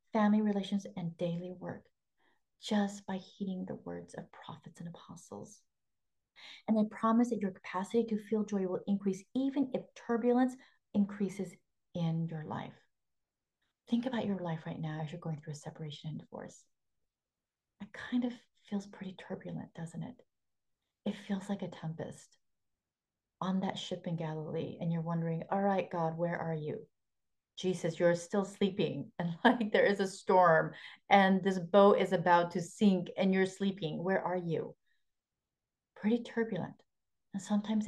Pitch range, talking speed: 175-205 Hz, 160 wpm